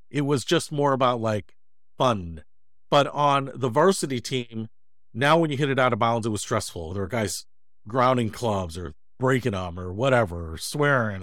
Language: English